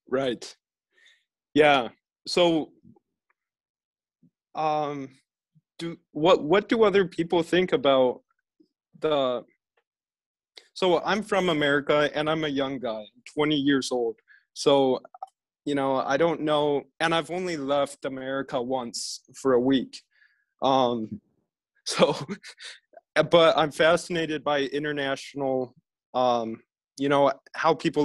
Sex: male